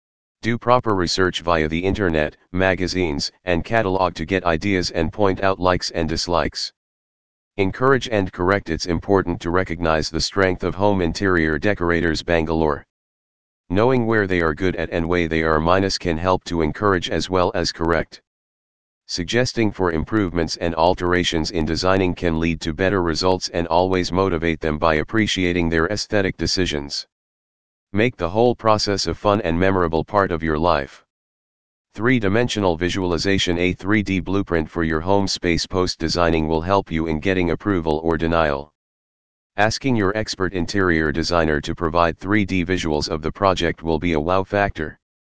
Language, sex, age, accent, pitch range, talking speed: English, male, 40-59, American, 80-100 Hz, 160 wpm